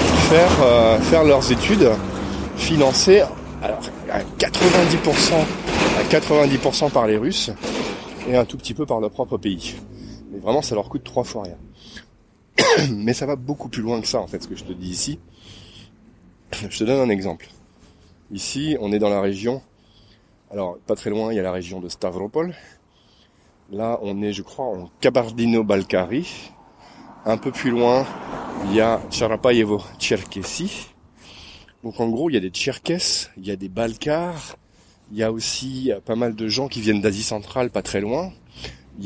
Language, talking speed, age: French, 175 wpm, 30-49